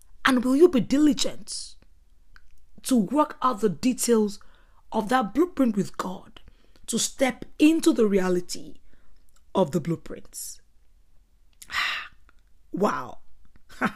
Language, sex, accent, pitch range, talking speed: English, female, Nigerian, 185-255 Hz, 105 wpm